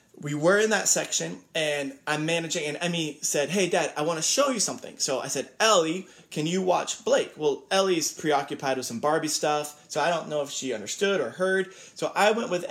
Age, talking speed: 20-39, 220 wpm